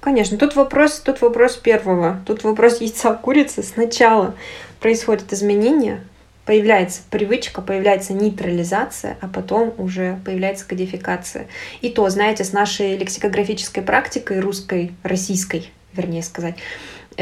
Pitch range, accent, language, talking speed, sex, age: 190-225 Hz, native, Russian, 115 wpm, female, 20-39